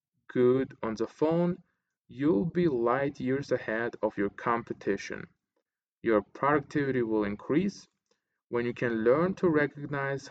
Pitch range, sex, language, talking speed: 115-150 Hz, male, English, 130 wpm